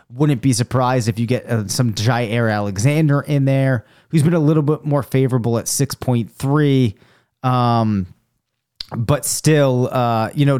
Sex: male